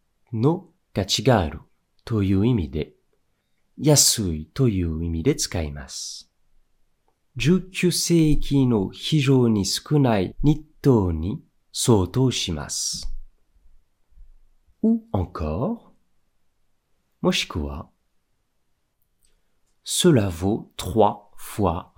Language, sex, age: Japanese, male, 40-59